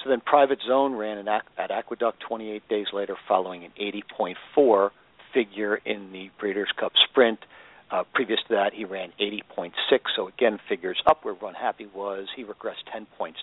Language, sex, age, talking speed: English, male, 50-69, 170 wpm